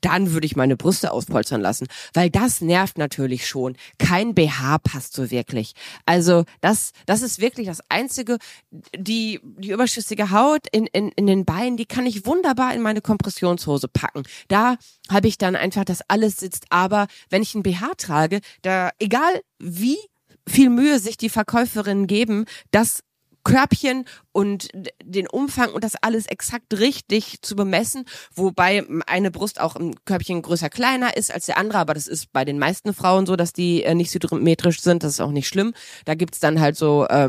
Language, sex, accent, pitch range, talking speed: German, female, German, 165-215 Hz, 180 wpm